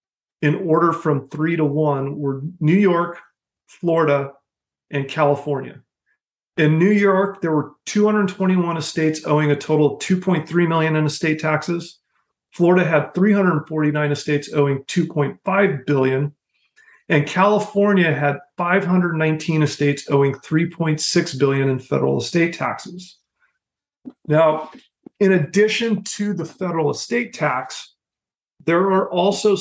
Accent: American